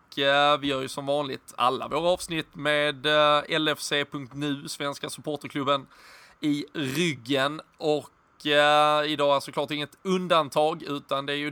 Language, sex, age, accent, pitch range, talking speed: Swedish, male, 20-39, native, 135-155 Hz, 130 wpm